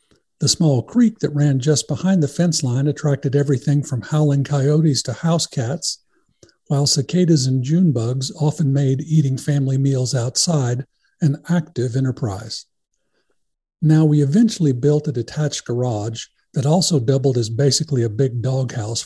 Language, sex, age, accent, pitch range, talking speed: English, male, 50-69, American, 130-155 Hz, 150 wpm